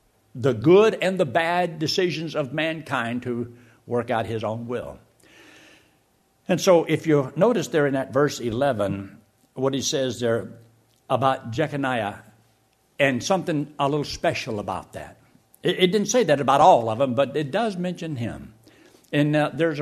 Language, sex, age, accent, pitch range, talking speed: English, male, 60-79, American, 115-160 Hz, 165 wpm